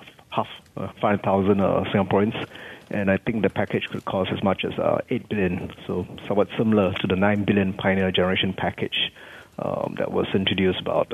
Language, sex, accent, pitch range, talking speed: English, male, Malaysian, 95-110 Hz, 185 wpm